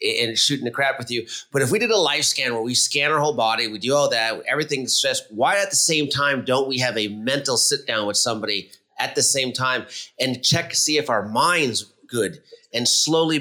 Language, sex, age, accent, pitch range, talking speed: English, male, 30-49, American, 125-150 Hz, 235 wpm